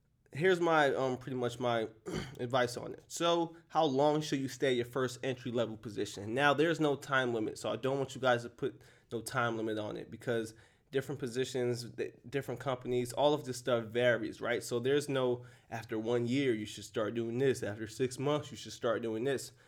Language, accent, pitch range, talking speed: Italian, American, 115-135 Hz, 205 wpm